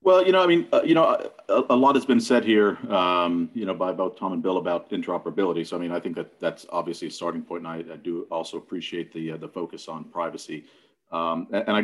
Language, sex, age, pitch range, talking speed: English, male, 40-59, 80-95 Hz, 265 wpm